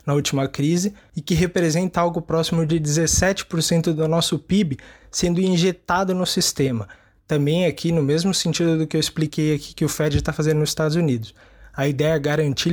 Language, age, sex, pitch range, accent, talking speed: Portuguese, 20-39, male, 145-170 Hz, Brazilian, 185 wpm